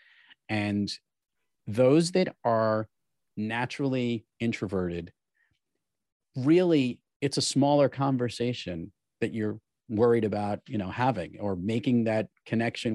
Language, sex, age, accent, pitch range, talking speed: English, male, 40-59, American, 105-140 Hz, 100 wpm